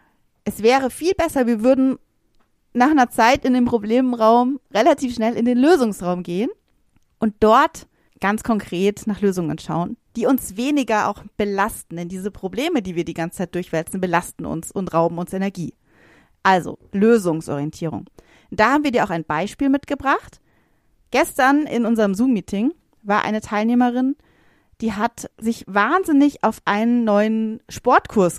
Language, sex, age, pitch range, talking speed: German, female, 30-49, 195-250 Hz, 150 wpm